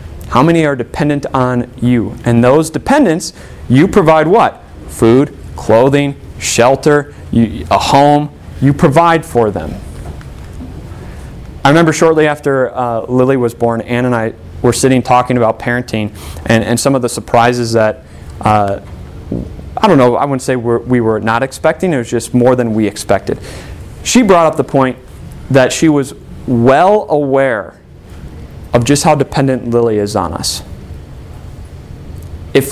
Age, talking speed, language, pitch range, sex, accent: 30-49, 150 wpm, English, 105-150 Hz, male, American